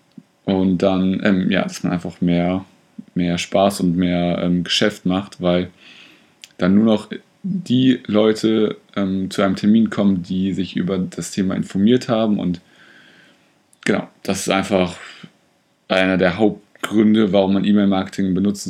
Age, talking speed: 30-49, 145 wpm